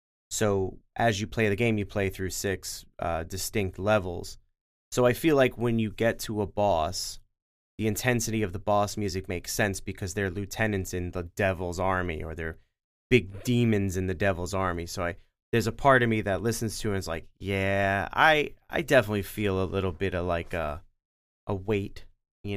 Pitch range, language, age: 90-110 Hz, English, 30-49